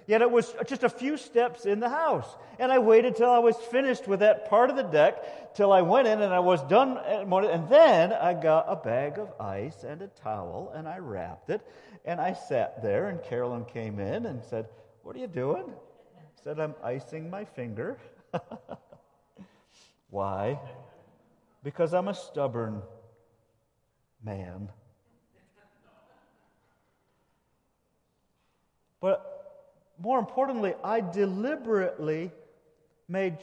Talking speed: 140 wpm